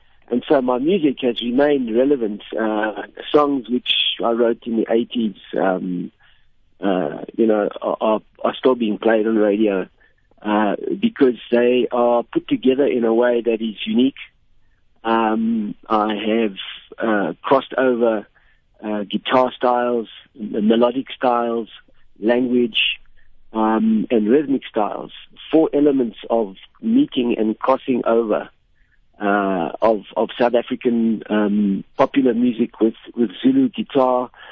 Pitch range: 110-130 Hz